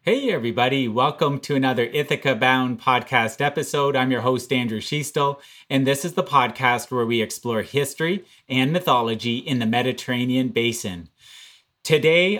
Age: 30-49